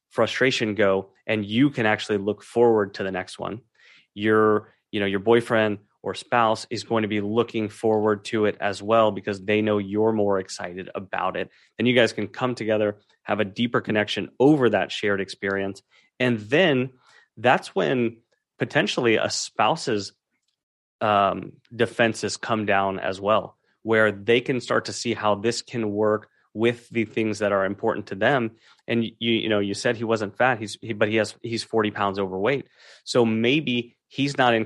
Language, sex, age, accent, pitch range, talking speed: English, male, 30-49, American, 100-115 Hz, 180 wpm